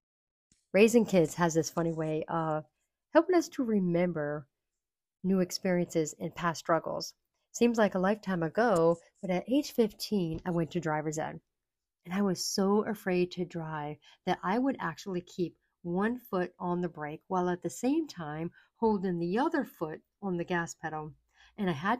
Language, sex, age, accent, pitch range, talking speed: English, female, 50-69, American, 165-210 Hz, 170 wpm